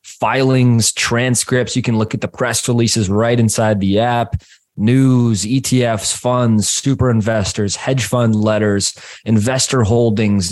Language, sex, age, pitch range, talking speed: English, male, 20-39, 95-115 Hz, 130 wpm